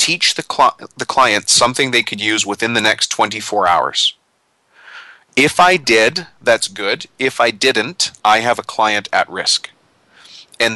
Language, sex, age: English, male, 30-49